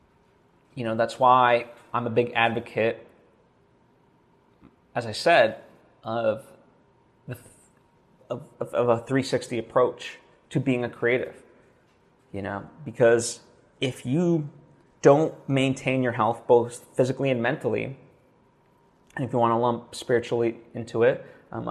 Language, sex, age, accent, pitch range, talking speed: English, male, 20-39, American, 115-140 Hz, 120 wpm